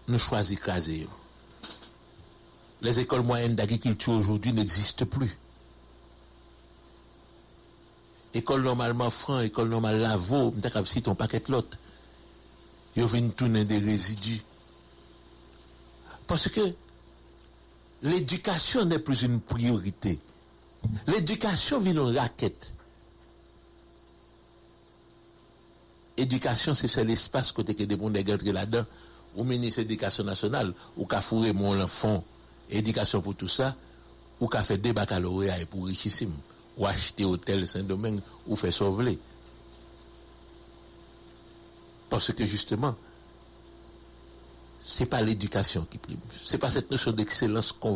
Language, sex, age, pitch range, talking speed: English, male, 60-79, 90-120 Hz, 115 wpm